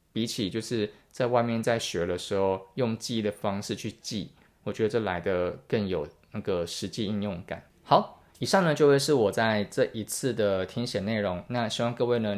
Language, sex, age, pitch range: Chinese, male, 20-39, 100-120 Hz